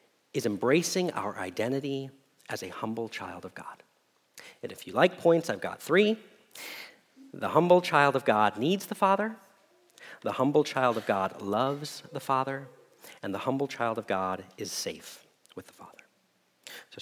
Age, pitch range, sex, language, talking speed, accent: 40-59, 130-180 Hz, male, English, 160 wpm, American